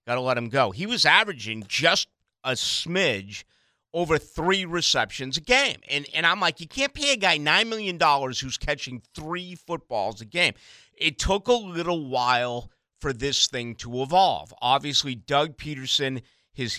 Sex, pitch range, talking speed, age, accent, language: male, 115-150 Hz, 170 wpm, 50-69, American, English